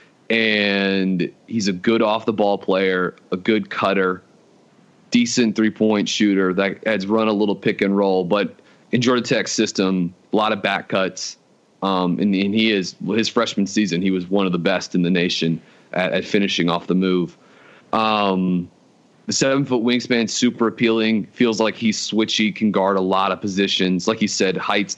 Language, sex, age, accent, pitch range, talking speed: English, male, 30-49, American, 95-110 Hz, 185 wpm